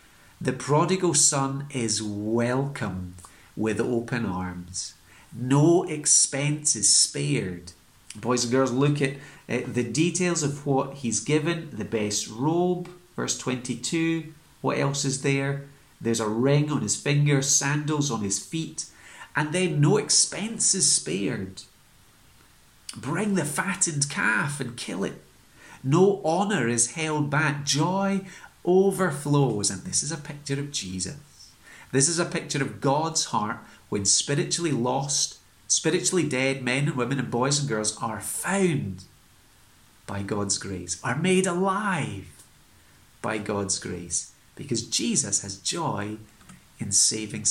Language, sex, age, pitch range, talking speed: English, male, 40-59, 110-160 Hz, 135 wpm